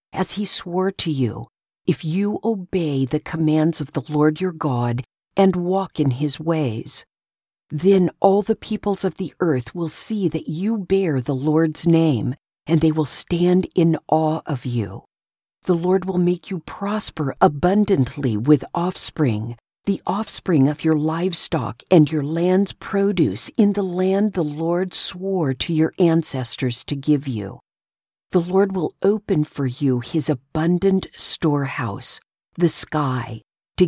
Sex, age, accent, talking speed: female, 50-69, American, 150 wpm